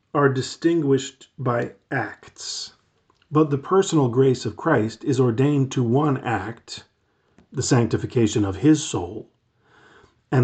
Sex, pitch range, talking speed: male, 115-140 Hz, 120 wpm